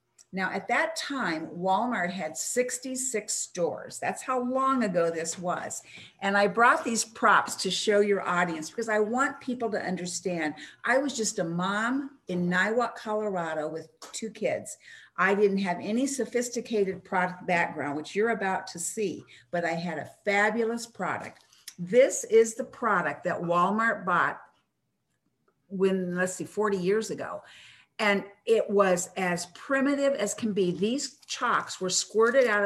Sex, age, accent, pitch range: female, 50-69, American, 180-230 Hz